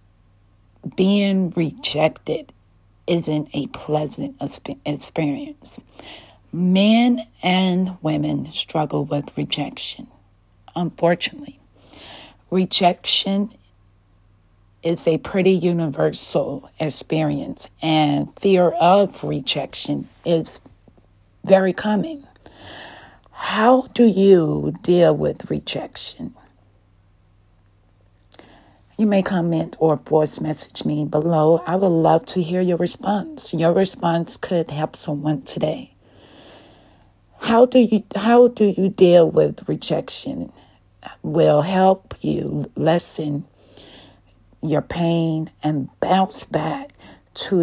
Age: 40-59